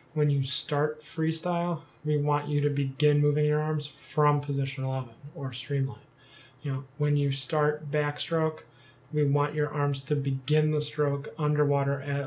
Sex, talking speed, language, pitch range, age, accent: male, 160 wpm, English, 135-155 Hz, 20-39, American